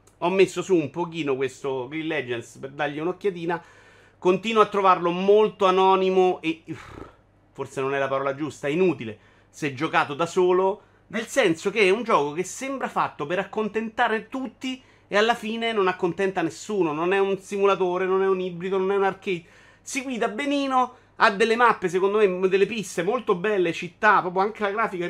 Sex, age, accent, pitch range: male, 30-49, native, 150-210 Hz